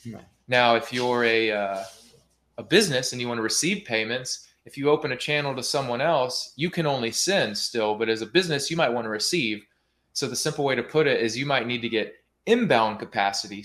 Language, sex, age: Turkish, male, 20-39